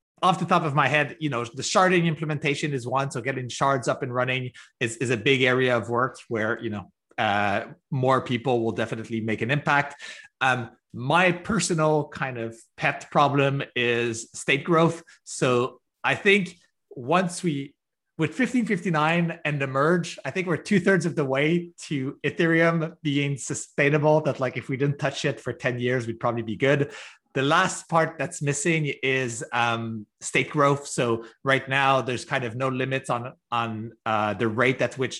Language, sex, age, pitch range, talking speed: English, male, 30-49, 125-160 Hz, 180 wpm